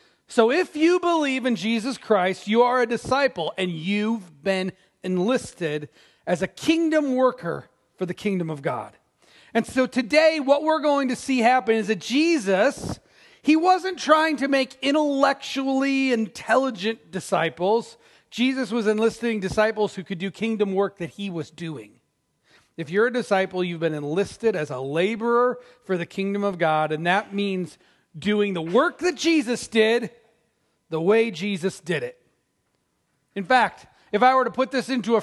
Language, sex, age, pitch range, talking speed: English, male, 40-59, 195-255 Hz, 165 wpm